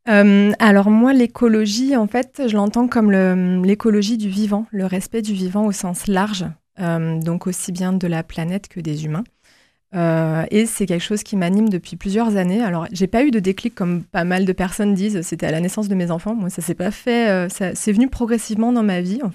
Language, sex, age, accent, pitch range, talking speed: French, female, 20-39, French, 175-215 Hz, 225 wpm